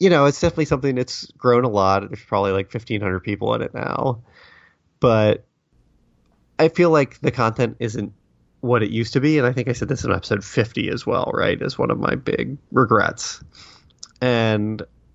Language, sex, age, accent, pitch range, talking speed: English, male, 30-49, American, 95-115 Hz, 190 wpm